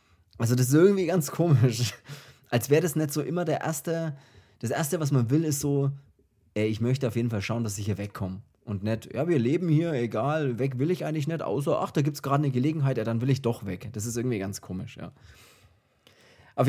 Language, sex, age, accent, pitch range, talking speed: German, male, 30-49, German, 105-145 Hz, 235 wpm